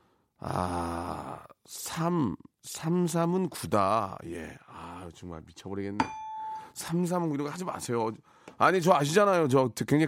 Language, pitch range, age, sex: Korean, 120-190 Hz, 40-59, male